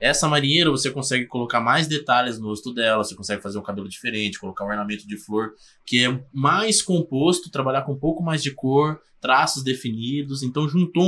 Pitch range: 105-140 Hz